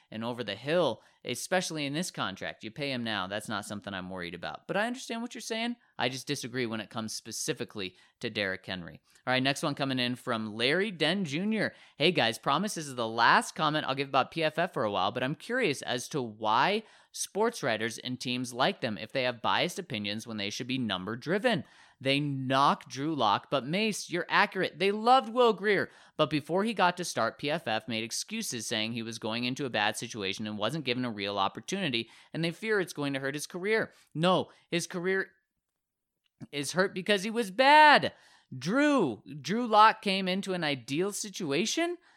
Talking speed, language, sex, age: 205 wpm, English, male, 30-49